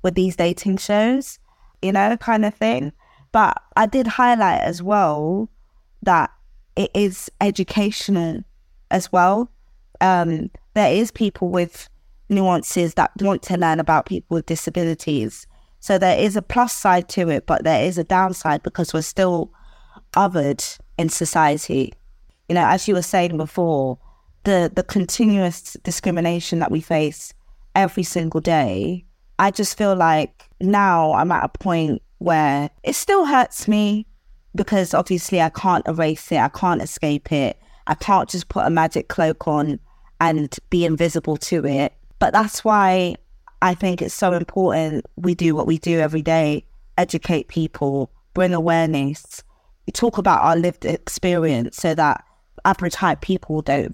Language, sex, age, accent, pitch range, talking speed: English, female, 20-39, British, 160-200 Hz, 155 wpm